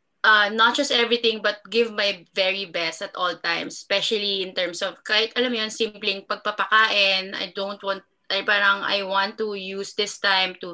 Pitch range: 195-230 Hz